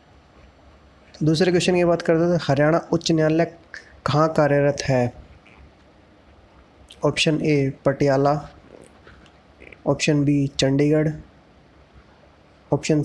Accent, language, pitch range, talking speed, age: native, Hindi, 120-160 Hz, 85 wpm, 20-39